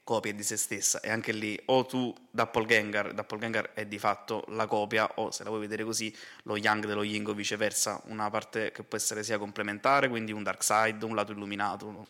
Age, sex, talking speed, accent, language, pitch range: 20-39, male, 225 wpm, native, Italian, 105-115 Hz